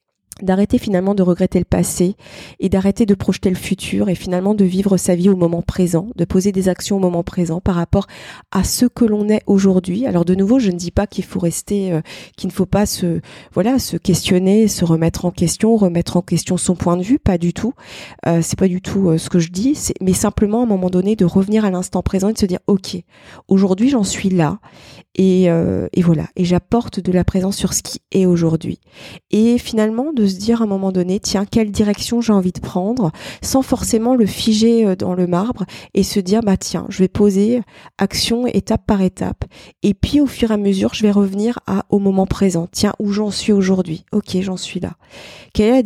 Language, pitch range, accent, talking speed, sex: French, 180-210 Hz, French, 225 wpm, female